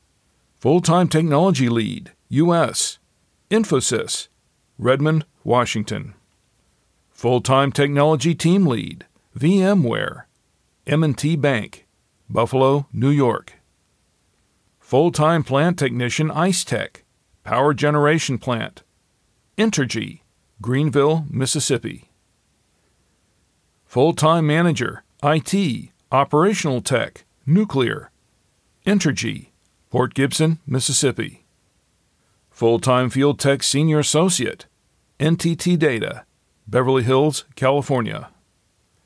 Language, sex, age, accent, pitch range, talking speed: English, male, 50-69, American, 125-155 Hz, 75 wpm